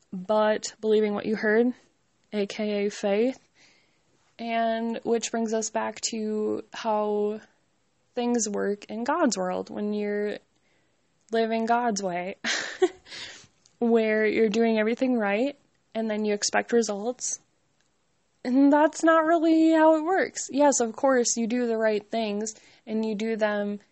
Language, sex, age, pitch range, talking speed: English, female, 20-39, 205-230 Hz, 135 wpm